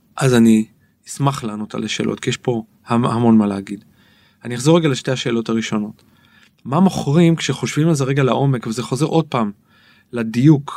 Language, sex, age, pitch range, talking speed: Hebrew, male, 30-49, 115-150 Hz, 165 wpm